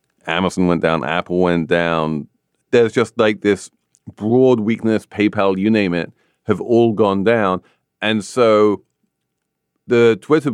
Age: 40-59